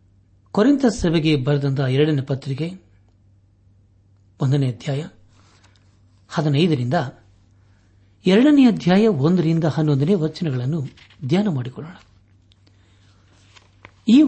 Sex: male